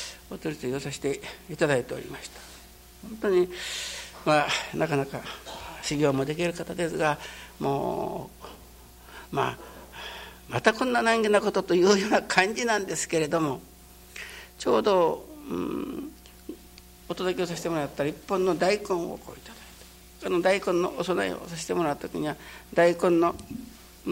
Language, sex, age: Japanese, male, 60-79